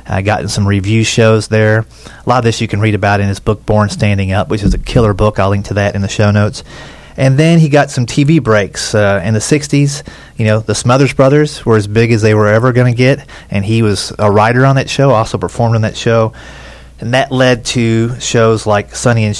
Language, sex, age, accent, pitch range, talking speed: English, male, 30-49, American, 105-125 Hz, 250 wpm